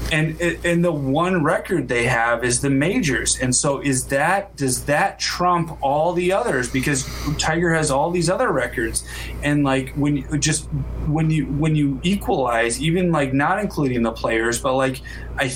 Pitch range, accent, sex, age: 120-155 Hz, American, male, 20-39